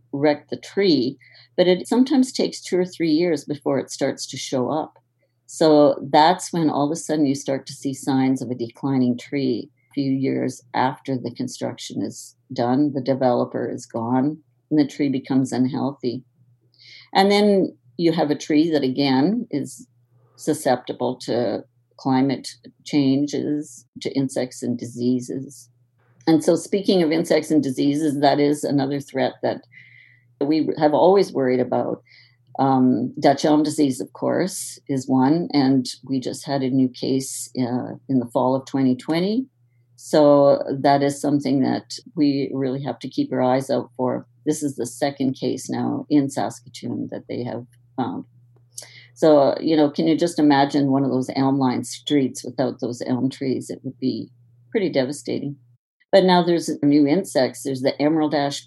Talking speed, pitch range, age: 165 wpm, 125-150 Hz, 50-69